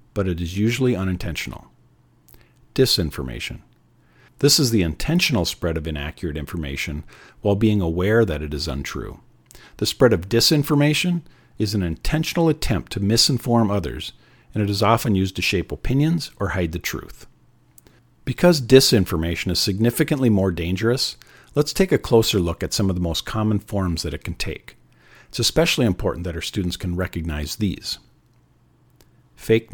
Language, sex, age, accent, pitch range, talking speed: English, male, 50-69, American, 90-120 Hz, 155 wpm